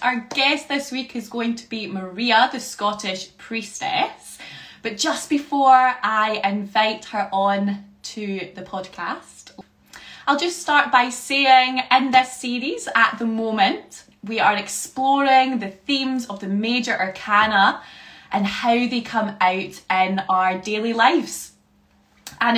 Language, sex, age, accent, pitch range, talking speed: English, female, 20-39, British, 200-255 Hz, 140 wpm